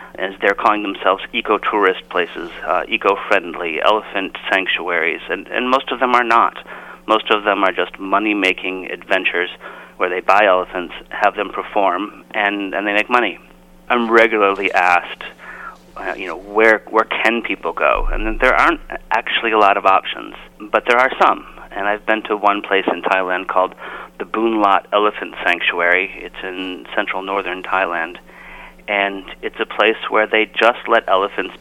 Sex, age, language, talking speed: male, 30-49, English, 165 wpm